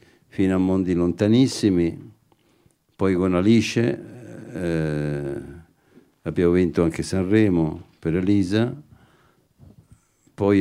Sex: male